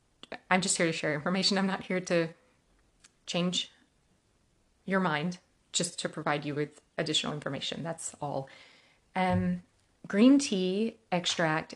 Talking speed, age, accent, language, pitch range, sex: 135 wpm, 30-49, American, English, 165-215 Hz, female